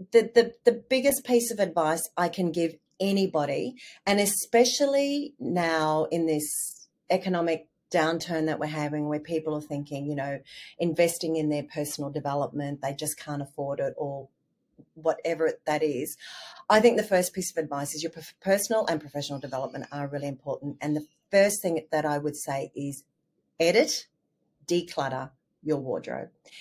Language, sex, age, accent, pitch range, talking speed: English, female, 40-59, Australian, 145-185 Hz, 160 wpm